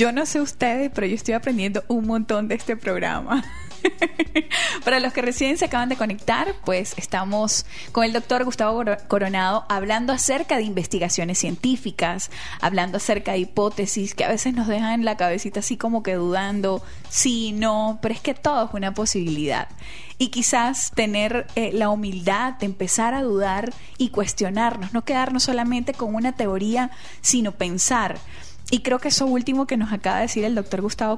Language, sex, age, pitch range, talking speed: Spanish, female, 10-29, 200-250 Hz, 175 wpm